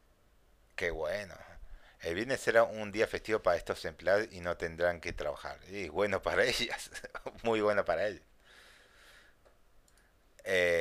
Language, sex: Spanish, male